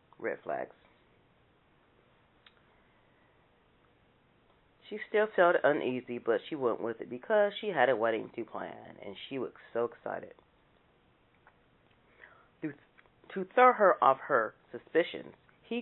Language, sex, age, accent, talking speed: English, female, 40-59, American, 115 wpm